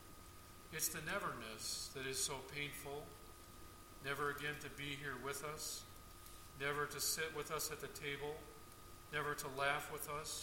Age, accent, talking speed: 50-69, American, 155 wpm